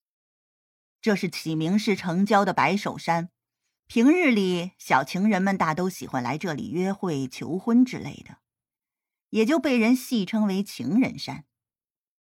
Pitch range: 155-225 Hz